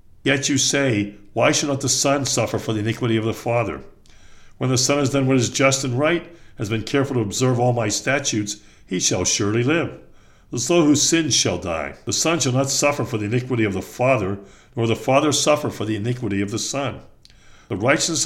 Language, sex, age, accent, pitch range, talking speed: English, male, 60-79, American, 110-140 Hz, 215 wpm